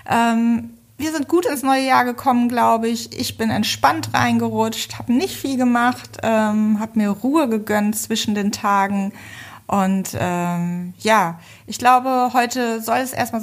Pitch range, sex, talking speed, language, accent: 195-230 Hz, female, 155 wpm, German, German